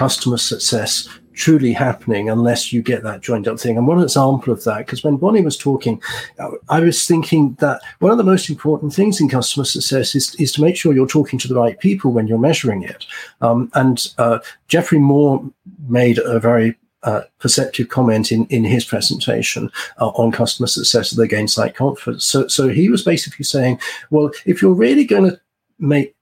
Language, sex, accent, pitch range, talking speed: English, male, British, 120-160 Hz, 195 wpm